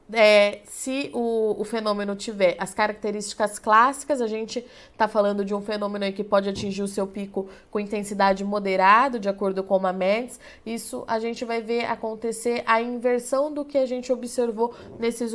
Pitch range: 210-240 Hz